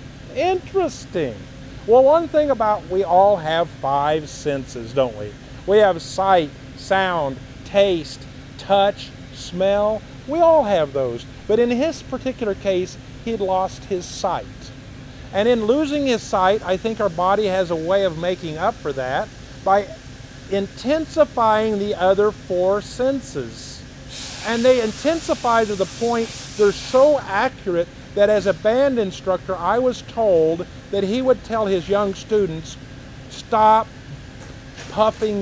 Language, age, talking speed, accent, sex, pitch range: English, 40-59, 135 wpm, American, male, 140-215 Hz